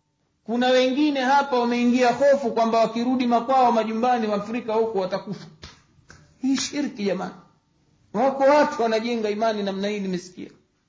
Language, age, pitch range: Swahili, 50-69, 165-235 Hz